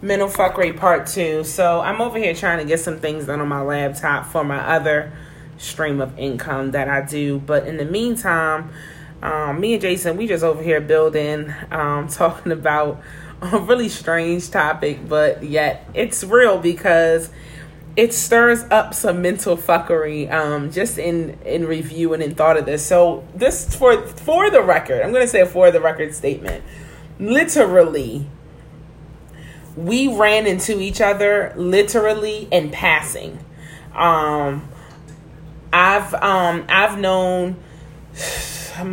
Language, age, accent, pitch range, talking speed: English, 30-49, American, 155-185 Hz, 145 wpm